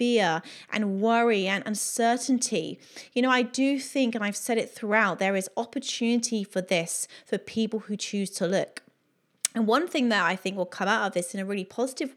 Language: English